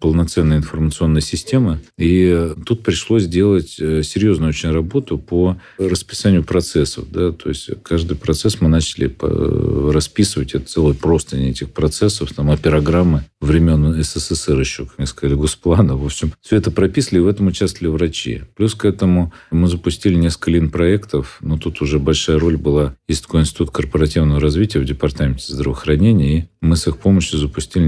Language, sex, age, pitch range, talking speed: Russian, male, 40-59, 75-90 Hz, 155 wpm